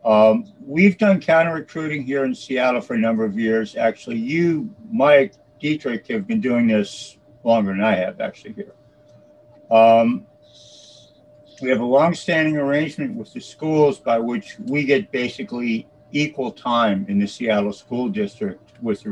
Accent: American